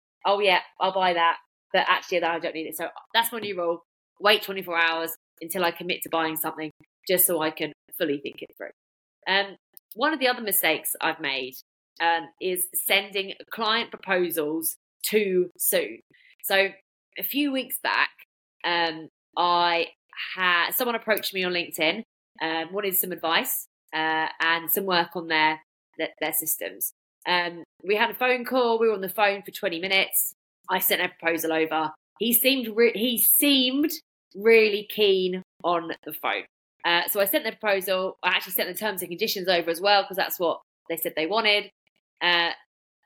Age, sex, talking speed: 20-39, female, 180 wpm